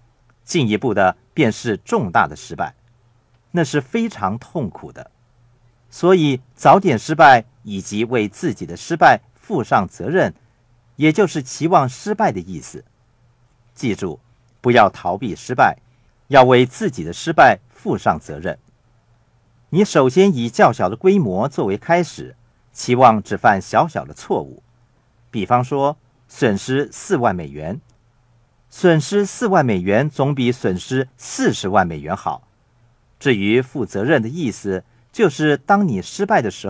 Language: Chinese